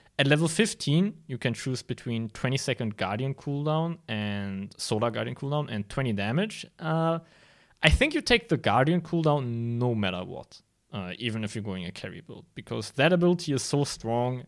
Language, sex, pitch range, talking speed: English, male, 105-145 Hz, 180 wpm